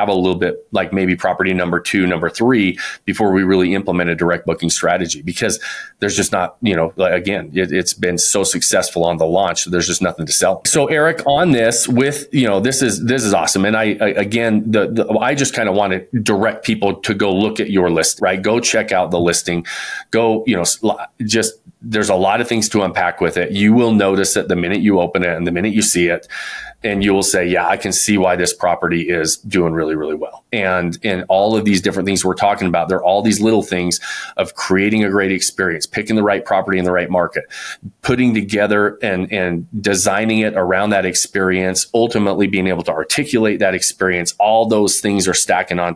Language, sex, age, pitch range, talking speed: English, male, 30-49, 90-110 Hz, 225 wpm